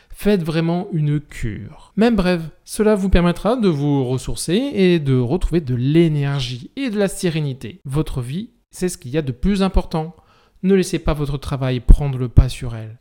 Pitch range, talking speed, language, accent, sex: 135-185 Hz, 190 wpm, French, French, male